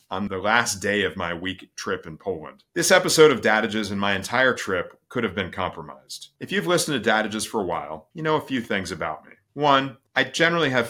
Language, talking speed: English, 225 wpm